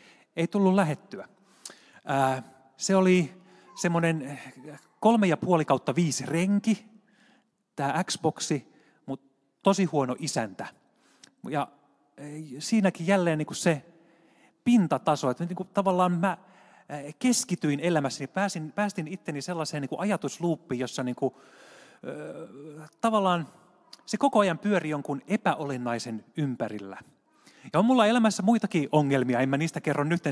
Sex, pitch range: male, 135-190 Hz